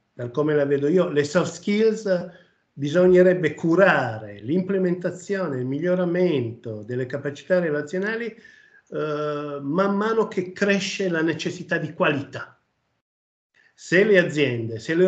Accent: native